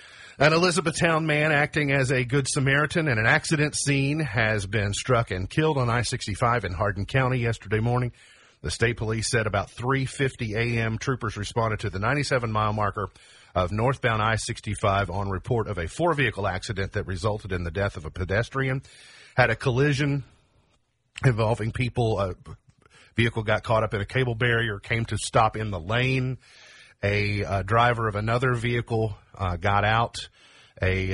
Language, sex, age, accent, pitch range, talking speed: English, male, 50-69, American, 105-125 Hz, 160 wpm